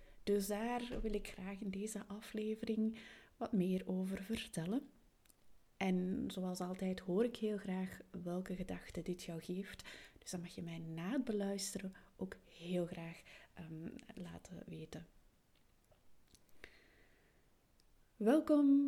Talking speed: 125 wpm